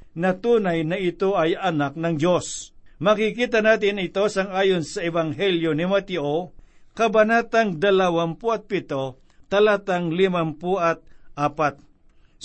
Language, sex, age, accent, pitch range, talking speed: Filipino, male, 60-79, native, 165-210 Hz, 95 wpm